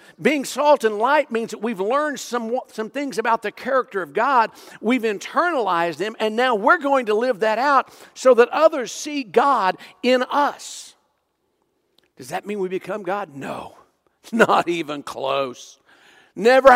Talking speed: 165 wpm